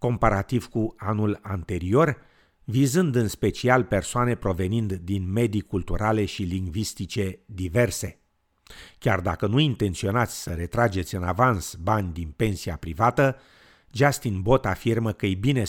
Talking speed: 125 wpm